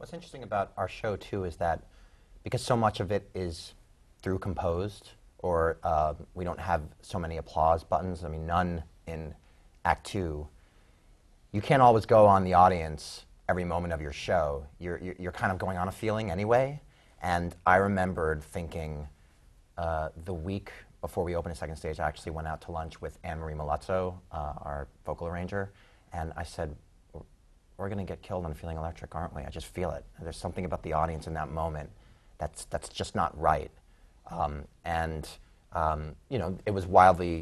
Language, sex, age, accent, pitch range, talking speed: English, male, 30-49, American, 80-95 Hz, 190 wpm